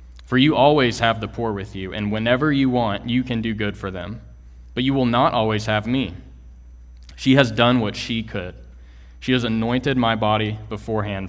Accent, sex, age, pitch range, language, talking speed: American, male, 20-39, 95-120 Hz, English, 195 wpm